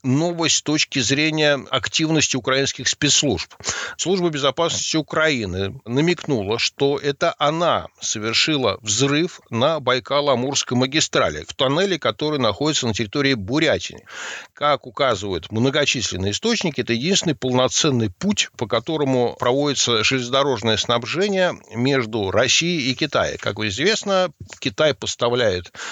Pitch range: 115-155 Hz